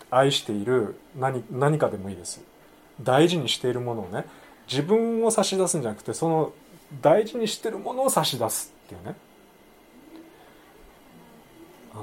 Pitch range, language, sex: 115-190 Hz, Japanese, male